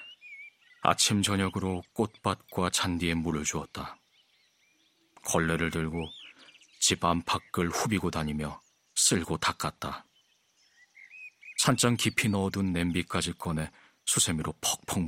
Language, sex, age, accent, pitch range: Korean, male, 40-59, native, 80-110 Hz